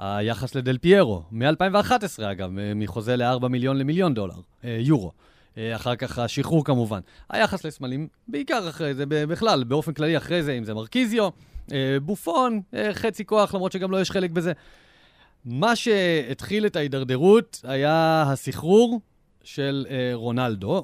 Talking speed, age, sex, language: 130 wpm, 30-49, male, Hebrew